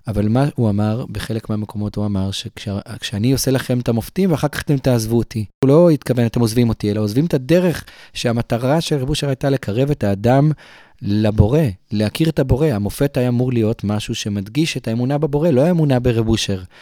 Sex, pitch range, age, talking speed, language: male, 110-145 Hz, 30-49, 190 wpm, Hebrew